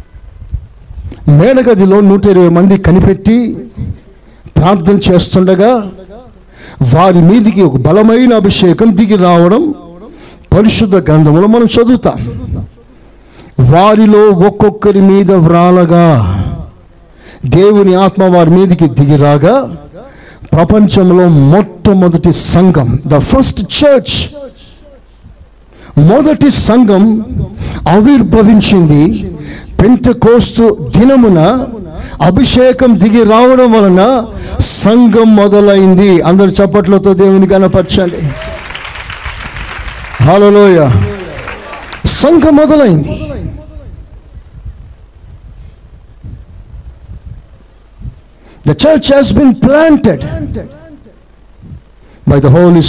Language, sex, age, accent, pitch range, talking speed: Telugu, male, 60-79, native, 150-220 Hz, 55 wpm